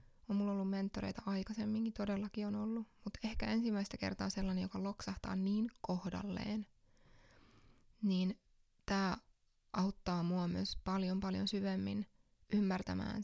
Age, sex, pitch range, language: 20-39, female, 190-215 Hz, English